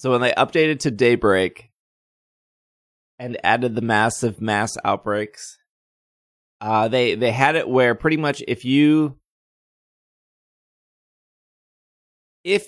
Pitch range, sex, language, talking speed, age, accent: 105-130 Hz, male, English, 110 wpm, 20-39, American